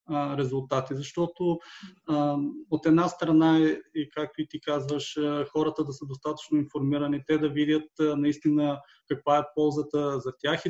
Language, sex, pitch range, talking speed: Bulgarian, male, 145-165 Hz, 135 wpm